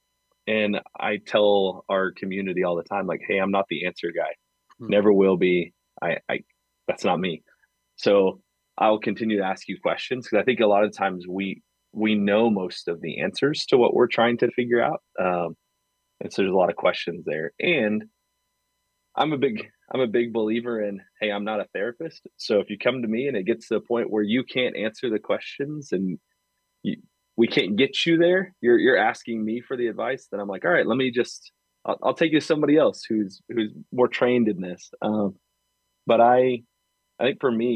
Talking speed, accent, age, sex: 210 wpm, American, 30-49, male